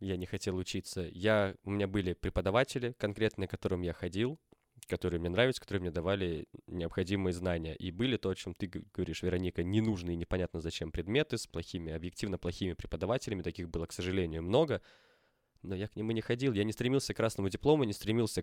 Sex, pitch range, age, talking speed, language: male, 90-110 Hz, 20-39, 190 wpm, Russian